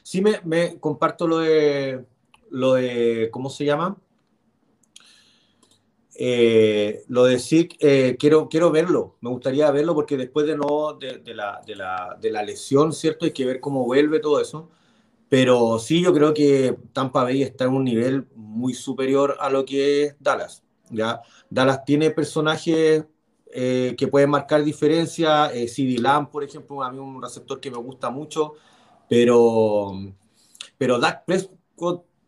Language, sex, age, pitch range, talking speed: Spanish, male, 40-59, 135-170 Hz, 155 wpm